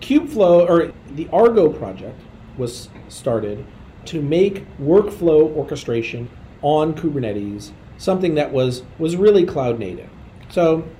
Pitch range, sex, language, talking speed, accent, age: 110-160 Hz, male, English, 115 wpm, American, 40-59